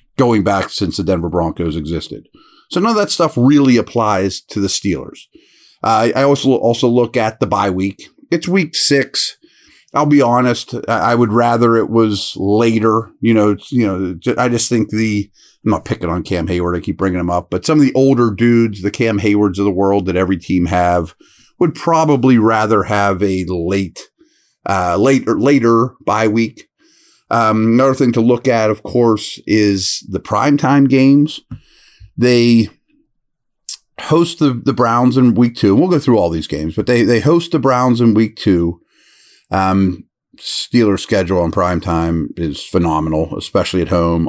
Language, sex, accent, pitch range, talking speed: English, male, American, 95-130 Hz, 175 wpm